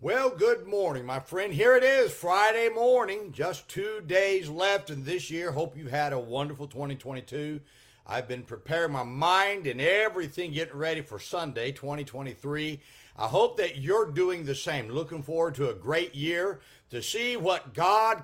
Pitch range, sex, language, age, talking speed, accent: 140-195 Hz, male, English, 50-69, 170 wpm, American